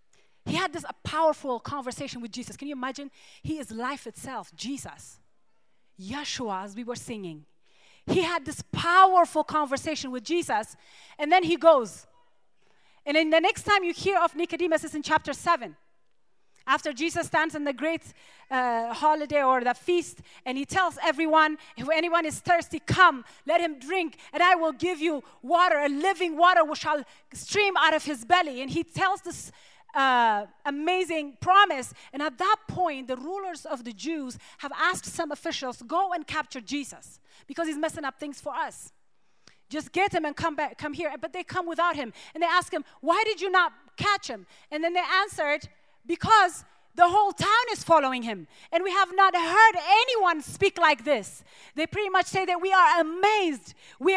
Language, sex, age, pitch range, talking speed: English, female, 30-49, 285-360 Hz, 185 wpm